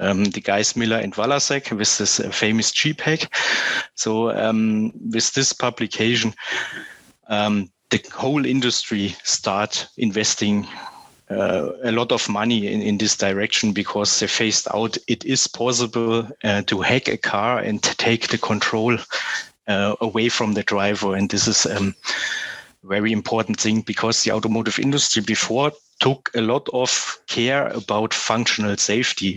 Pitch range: 105-120 Hz